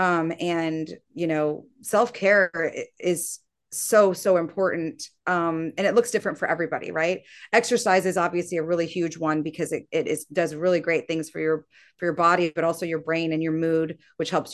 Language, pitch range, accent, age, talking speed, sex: English, 160-185 Hz, American, 30-49, 190 wpm, female